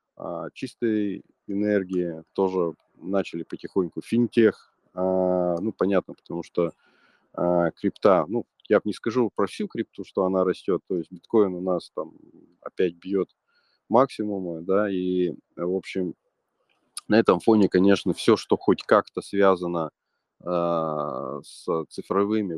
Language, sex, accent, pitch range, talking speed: Russian, male, native, 90-115 Hz, 120 wpm